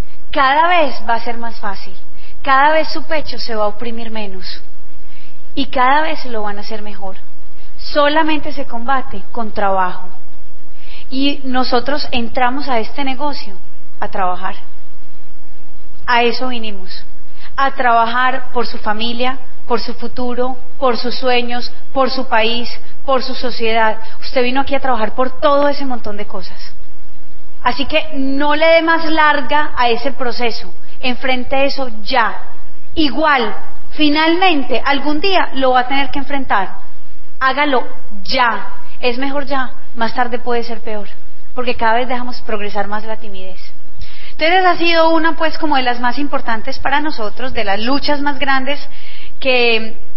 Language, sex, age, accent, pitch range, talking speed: Spanish, female, 30-49, Colombian, 215-275 Hz, 150 wpm